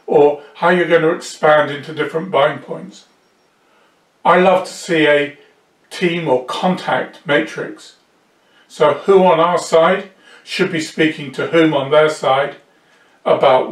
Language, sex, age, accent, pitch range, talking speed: English, male, 50-69, British, 145-175 Hz, 145 wpm